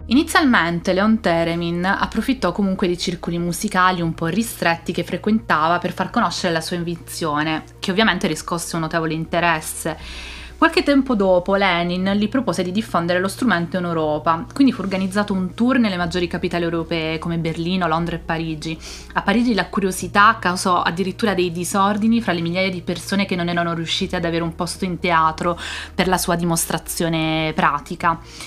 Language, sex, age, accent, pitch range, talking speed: Italian, female, 20-39, native, 165-195 Hz, 165 wpm